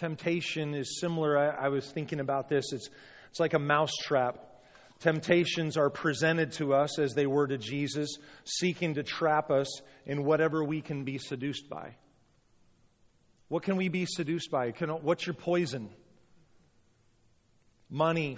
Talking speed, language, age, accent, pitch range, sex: 145 wpm, English, 40-59, American, 130-165 Hz, male